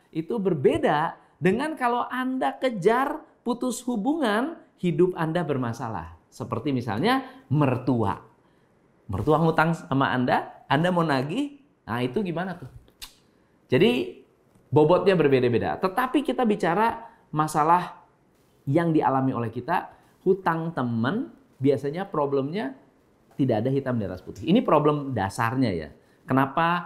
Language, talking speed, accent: Indonesian, 115 wpm, native